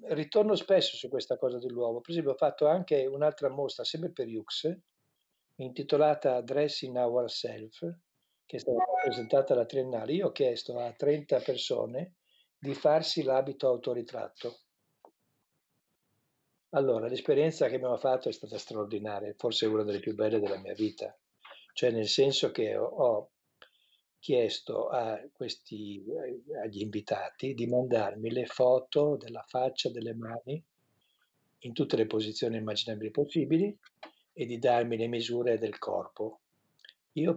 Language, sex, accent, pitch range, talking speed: Italian, male, native, 115-155 Hz, 130 wpm